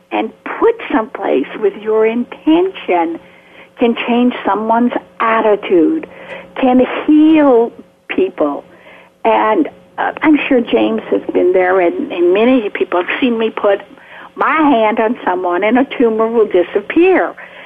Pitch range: 225-315 Hz